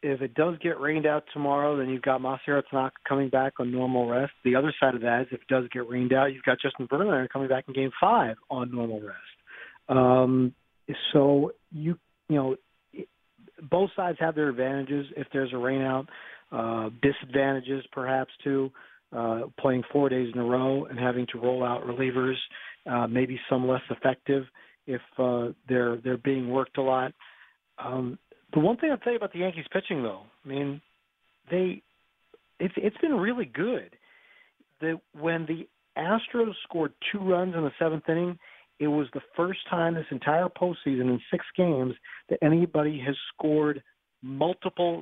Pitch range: 130-160 Hz